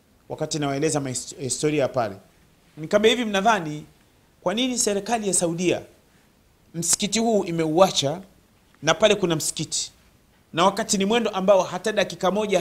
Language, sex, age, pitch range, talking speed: Swahili, male, 30-49, 150-195 Hz, 130 wpm